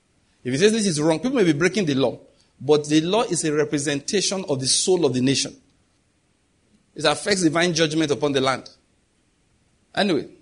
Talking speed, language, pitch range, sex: 185 wpm, English, 145-185 Hz, male